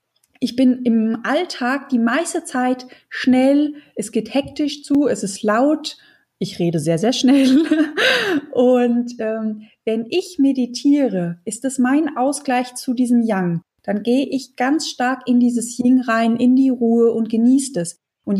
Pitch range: 215-260 Hz